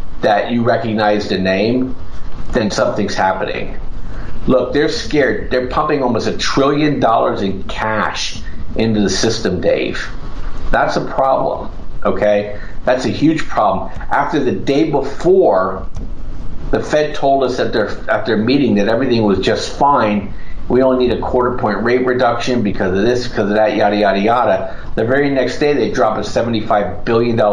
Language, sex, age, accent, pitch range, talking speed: English, male, 50-69, American, 105-130 Hz, 160 wpm